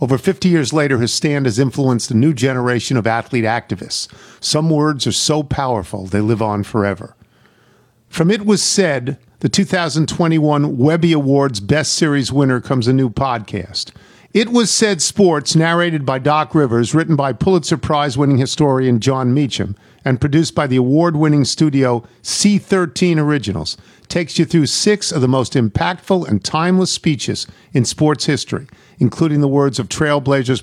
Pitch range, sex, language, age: 120-160 Hz, male, English, 50-69